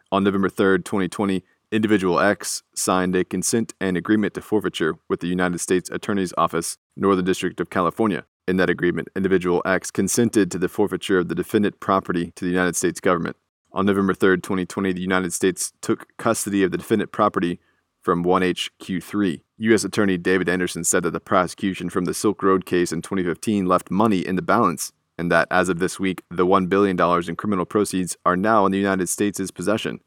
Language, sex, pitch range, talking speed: English, male, 90-100 Hz, 190 wpm